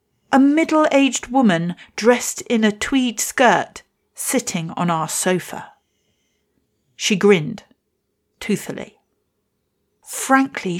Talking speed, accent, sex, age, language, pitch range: 90 wpm, British, female, 40-59, English, 185-245 Hz